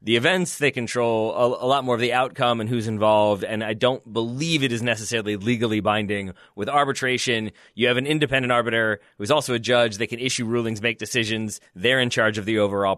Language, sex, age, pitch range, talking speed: English, male, 20-39, 105-125 Hz, 215 wpm